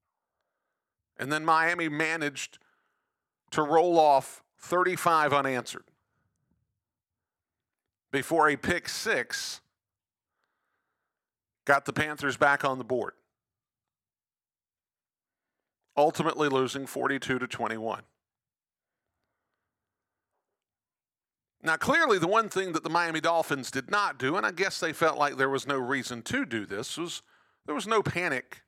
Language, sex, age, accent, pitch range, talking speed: English, male, 50-69, American, 125-165 Hz, 115 wpm